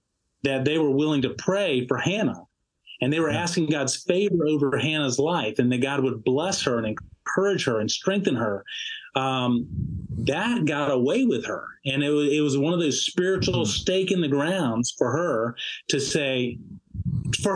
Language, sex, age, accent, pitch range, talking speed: English, male, 40-59, American, 130-170 Hz, 180 wpm